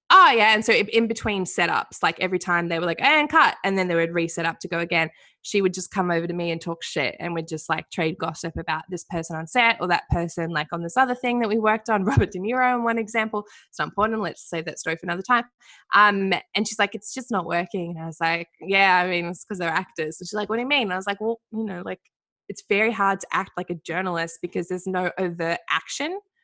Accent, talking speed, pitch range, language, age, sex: Australian, 275 wpm, 170-225 Hz, English, 20-39, female